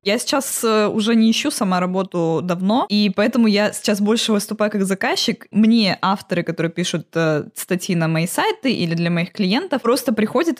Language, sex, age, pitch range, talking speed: Russian, female, 20-39, 185-235 Hz, 170 wpm